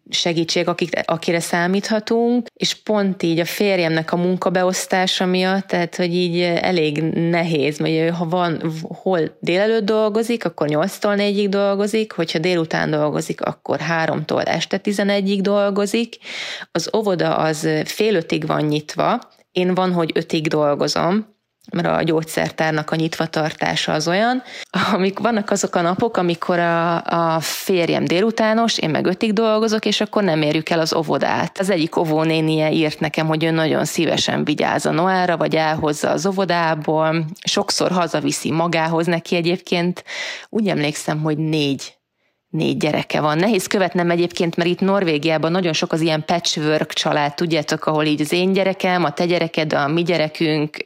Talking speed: 150 wpm